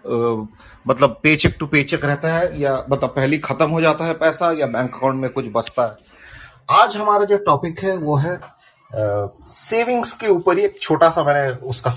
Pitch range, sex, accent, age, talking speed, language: 125-165 Hz, male, native, 30-49, 170 wpm, Hindi